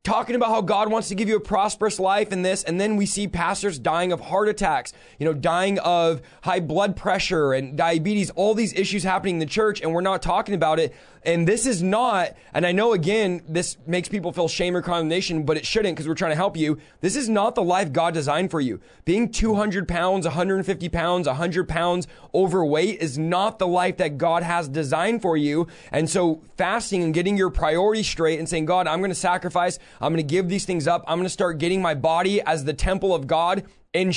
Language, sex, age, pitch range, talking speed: English, male, 20-39, 170-205 Hz, 230 wpm